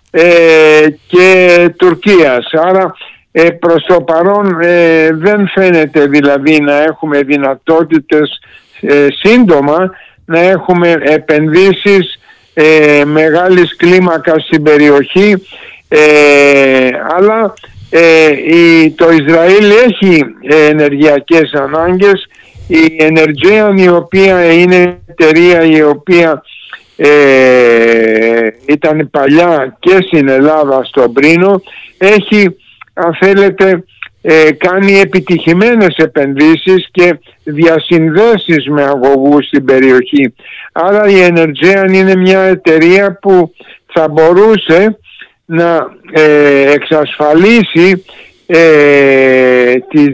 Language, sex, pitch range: Greek, male, 150-185 Hz